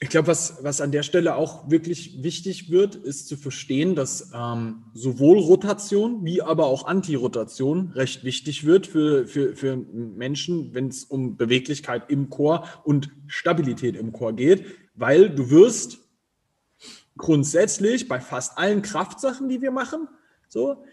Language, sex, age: German, male, 30-49